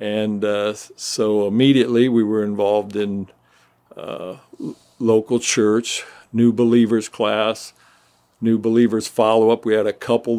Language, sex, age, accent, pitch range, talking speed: English, male, 50-69, American, 100-115 Hz, 125 wpm